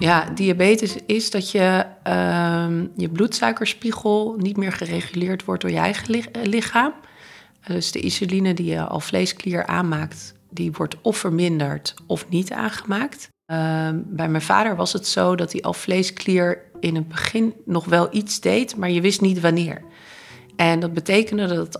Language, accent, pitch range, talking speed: Dutch, Dutch, 165-215 Hz, 155 wpm